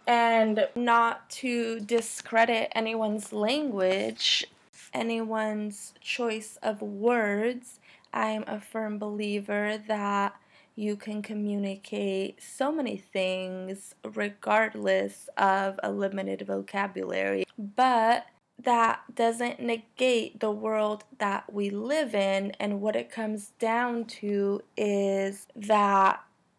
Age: 20-39